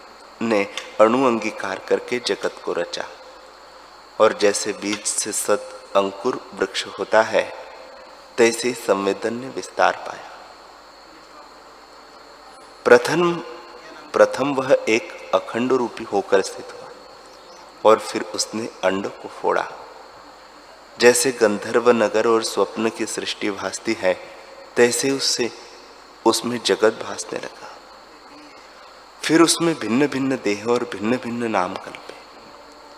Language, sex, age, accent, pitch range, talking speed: Hindi, male, 30-49, native, 100-130 Hz, 110 wpm